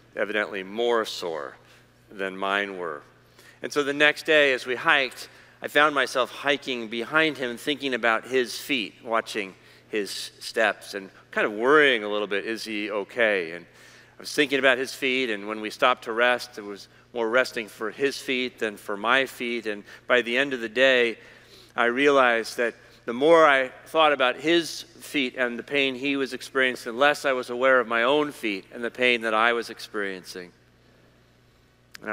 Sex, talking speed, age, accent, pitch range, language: male, 190 wpm, 40-59, American, 115-145 Hz, English